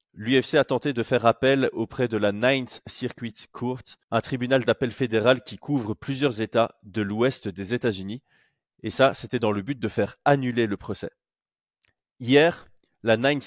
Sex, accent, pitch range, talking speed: male, French, 110-135 Hz, 170 wpm